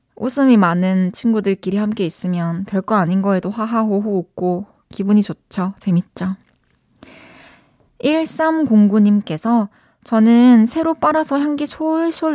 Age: 20-39